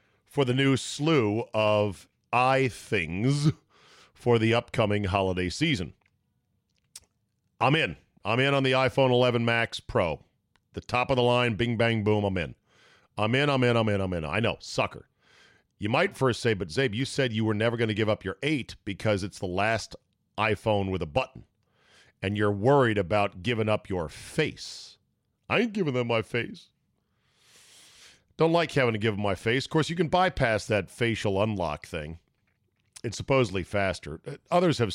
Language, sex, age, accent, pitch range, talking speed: English, male, 40-59, American, 100-125 Hz, 180 wpm